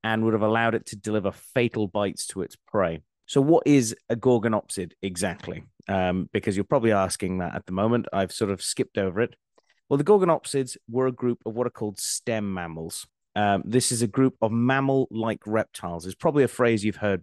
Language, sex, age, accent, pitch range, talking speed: English, male, 30-49, British, 100-125 Hz, 205 wpm